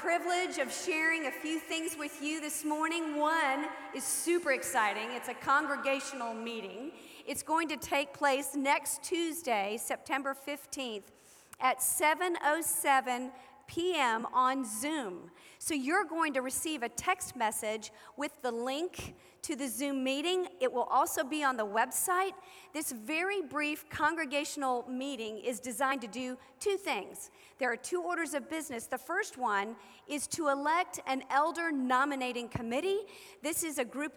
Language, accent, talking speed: English, American, 150 wpm